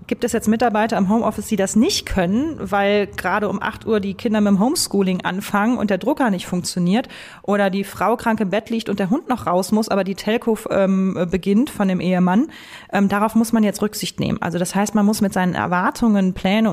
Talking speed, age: 225 wpm, 30-49